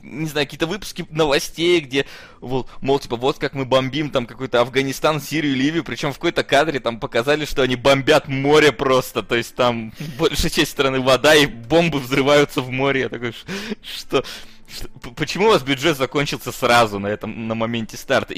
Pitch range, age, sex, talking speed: 125-160 Hz, 20-39, male, 180 wpm